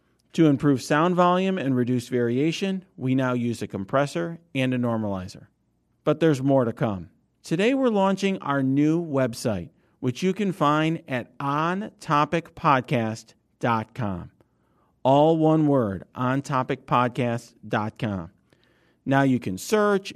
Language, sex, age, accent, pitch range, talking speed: English, male, 50-69, American, 125-165 Hz, 120 wpm